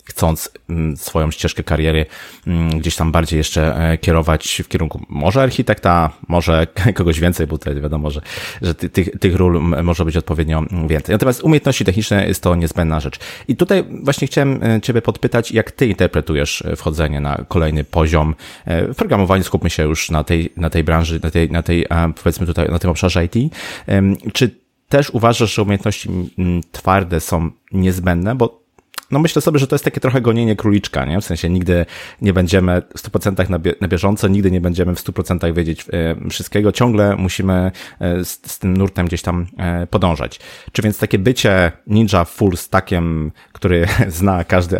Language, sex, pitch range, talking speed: Polish, male, 85-105 Hz, 165 wpm